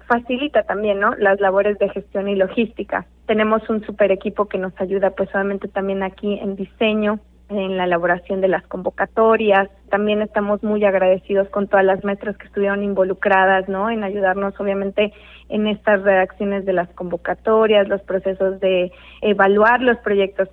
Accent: Mexican